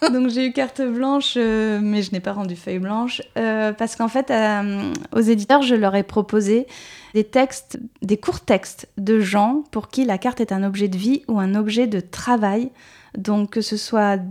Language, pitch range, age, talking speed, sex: French, 200-250 Hz, 20-39, 205 wpm, female